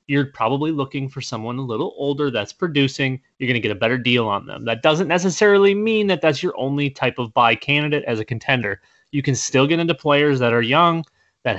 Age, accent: 30-49, American